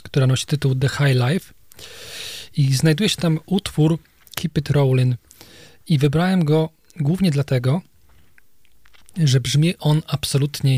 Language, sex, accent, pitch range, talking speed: Polish, male, native, 130-150 Hz, 130 wpm